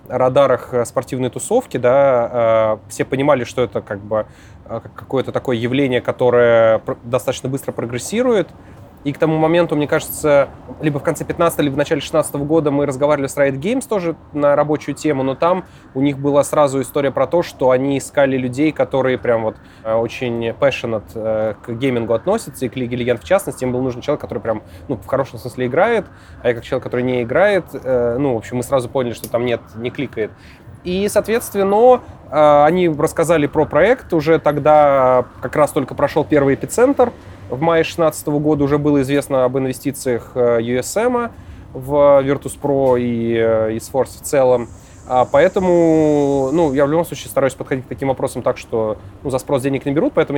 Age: 20-39